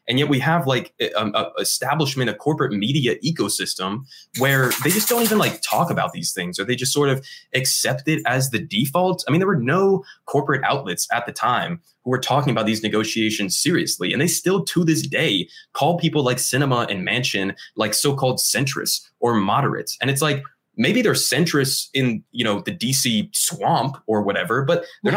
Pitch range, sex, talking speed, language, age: 120-155 Hz, male, 195 wpm, English, 20-39